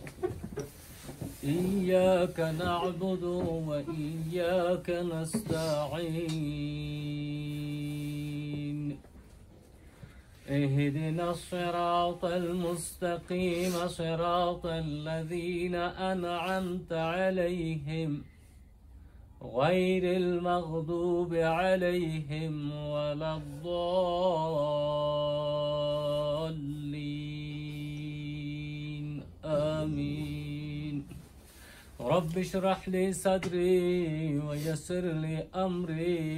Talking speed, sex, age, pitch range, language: 40 wpm, male, 40-59, 150-175 Hz, Persian